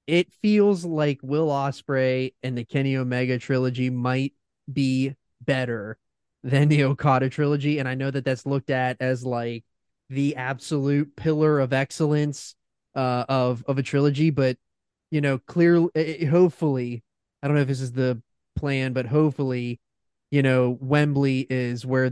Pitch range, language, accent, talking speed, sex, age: 125-150 Hz, English, American, 150 wpm, male, 20-39